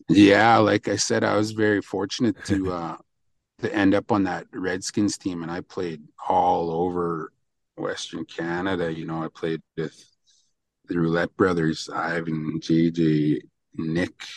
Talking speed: 145 wpm